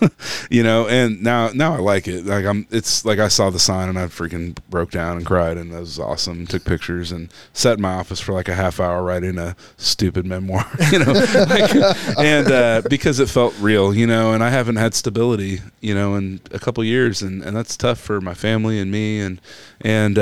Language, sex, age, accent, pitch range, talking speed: English, male, 30-49, American, 90-110 Hz, 230 wpm